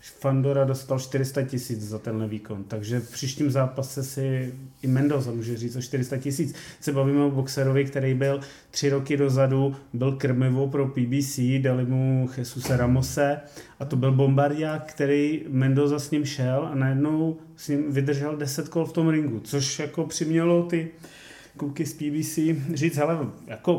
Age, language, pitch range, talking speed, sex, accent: 30-49, Czech, 125-145 Hz, 160 wpm, male, native